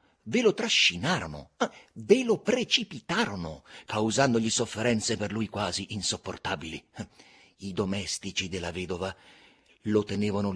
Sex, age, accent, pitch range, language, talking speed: male, 50-69, native, 110-175 Hz, Italian, 100 wpm